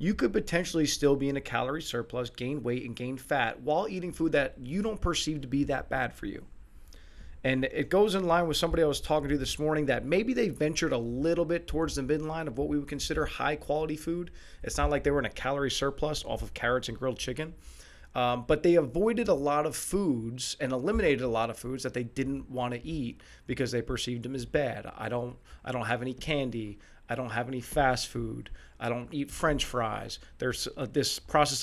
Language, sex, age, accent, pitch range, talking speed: English, male, 30-49, American, 115-150 Hz, 230 wpm